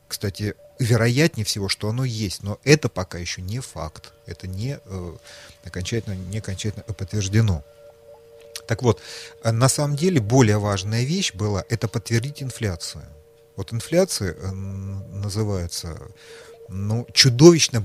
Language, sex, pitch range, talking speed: Russian, male, 95-120 Hz, 120 wpm